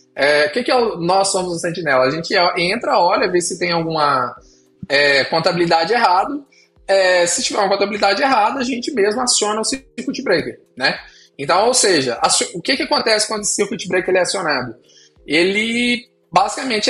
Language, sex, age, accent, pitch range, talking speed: Portuguese, male, 20-39, Brazilian, 165-215 Hz, 185 wpm